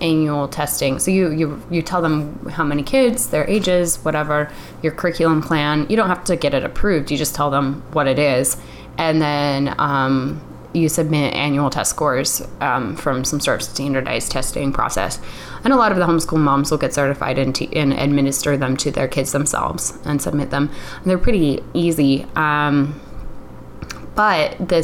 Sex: female